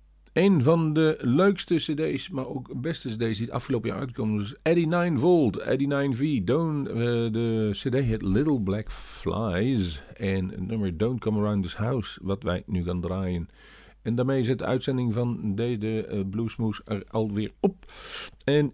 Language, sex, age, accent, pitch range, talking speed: Dutch, male, 50-69, Dutch, 95-125 Hz, 175 wpm